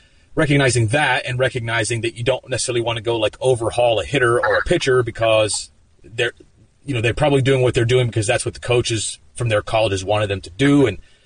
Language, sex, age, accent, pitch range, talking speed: English, male, 30-49, American, 115-140 Hz, 220 wpm